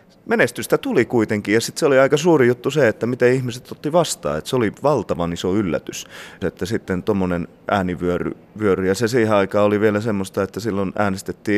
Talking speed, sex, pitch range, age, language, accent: 190 wpm, male, 95-120 Hz, 30-49, Finnish, native